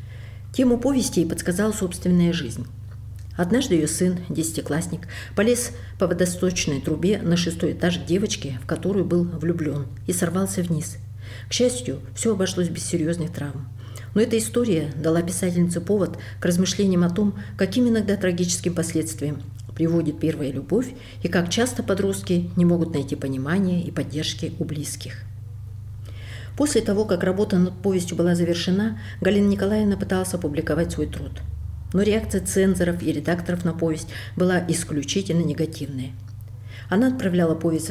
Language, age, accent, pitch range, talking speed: Russian, 50-69, native, 140-185 Hz, 140 wpm